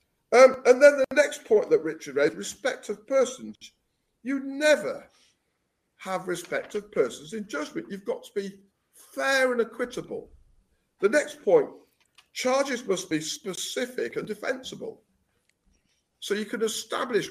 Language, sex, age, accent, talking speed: English, male, 50-69, British, 140 wpm